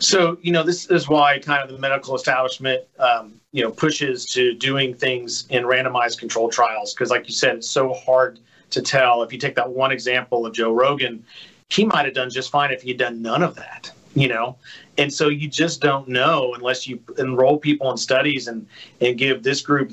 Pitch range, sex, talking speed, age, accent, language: 125-145 Hz, male, 215 wpm, 40-59, American, English